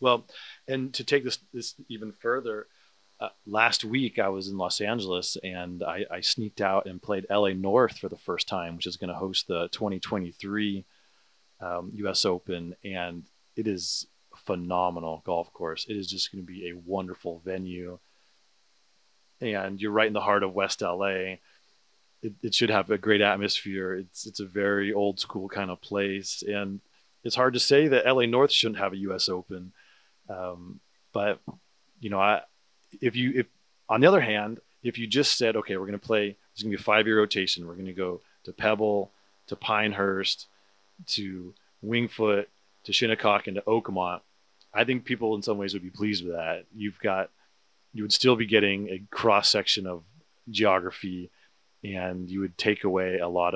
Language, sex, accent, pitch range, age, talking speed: English, male, American, 95-105 Hz, 30-49, 185 wpm